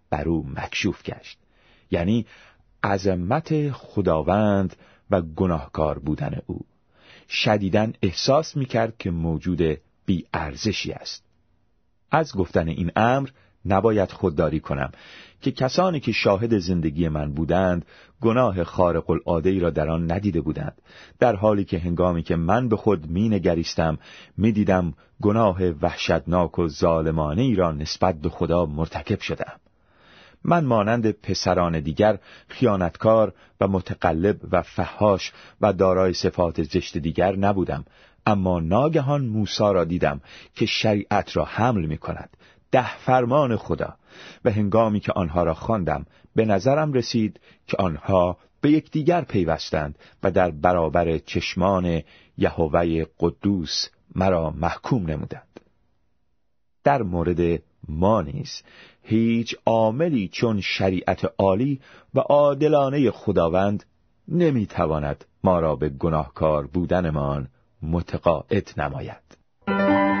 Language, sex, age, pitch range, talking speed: Persian, male, 40-59, 85-110 Hz, 115 wpm